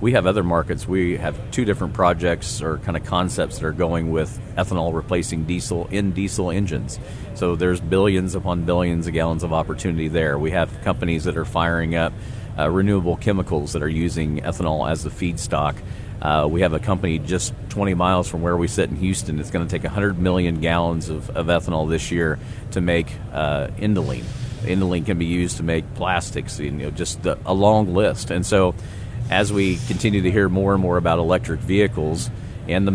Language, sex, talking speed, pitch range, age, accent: English, male, 200 wpm, 85-100 Hz, 40-59, American